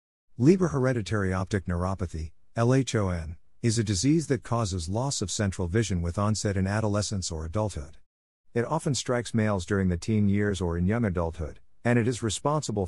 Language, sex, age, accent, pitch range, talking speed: English, male, 50-69, American, 90-110 Hz, 170 wpm